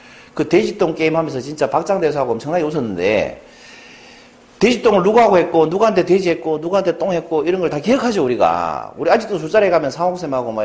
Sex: male